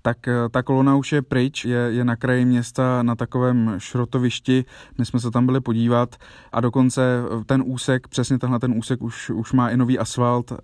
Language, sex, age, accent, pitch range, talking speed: Czech, male, 20-39, native, 115-125 Hz, 190 wpm